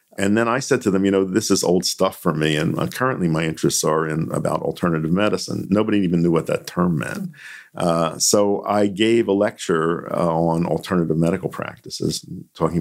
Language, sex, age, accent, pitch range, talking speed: English, male, 50-69, American, 80-100 Hz, 195 wpm